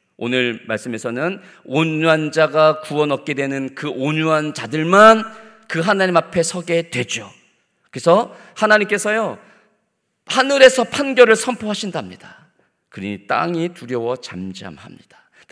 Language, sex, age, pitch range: Korean, male, 40-59, 130-200 Hz